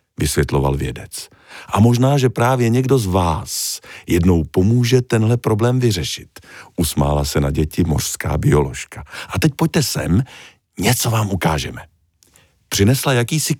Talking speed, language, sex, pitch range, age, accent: 130 wpm, Czech, male, 80-115 Hz, 50-69, native